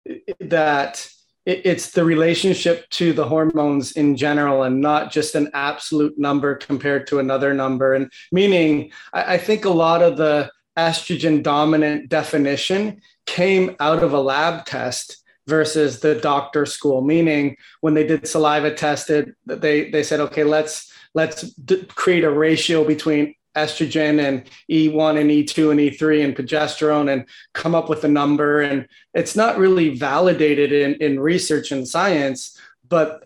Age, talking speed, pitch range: 20-39, 150 wpm, 145-165 Hz